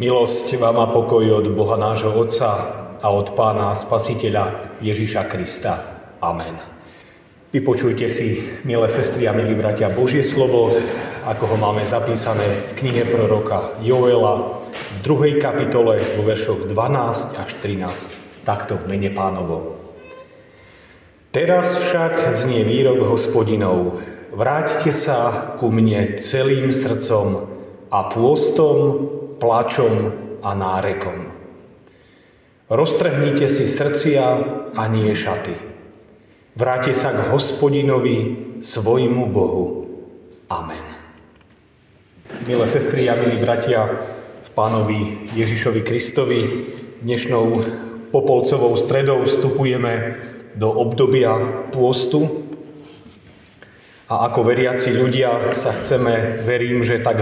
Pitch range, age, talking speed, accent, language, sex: 110-130 Hz, 40-59, 100 wpm, native, Czech, male